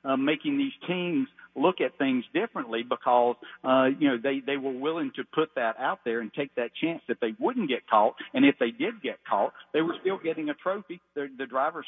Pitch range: 120-155 Hz